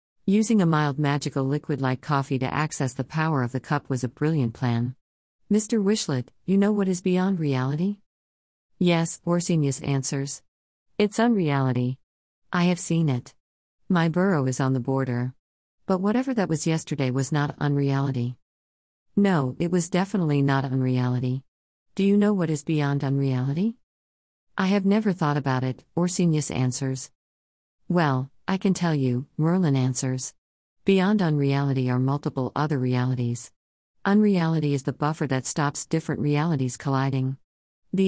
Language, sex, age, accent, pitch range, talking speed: English, female, 50-69, American, 130-175 Hz, 145 wpm